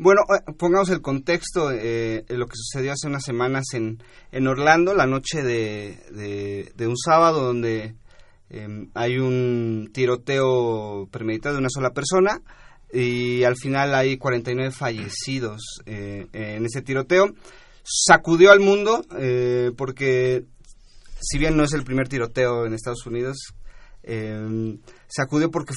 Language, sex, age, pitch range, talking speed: Spanish, male, 30-49, 120-160 Hz, 140 wpm